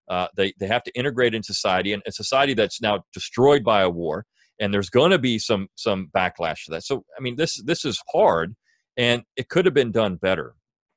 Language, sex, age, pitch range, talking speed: English, male, 40-59, 100-130 Hz, 225 wpm